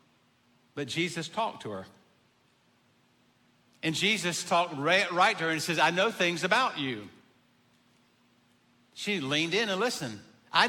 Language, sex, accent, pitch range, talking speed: English, male, American, 135-185 Hz, 135 wpm